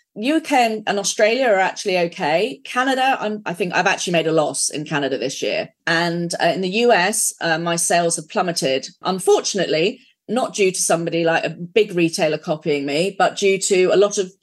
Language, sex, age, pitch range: English, female, 30-49, 165-215 Hz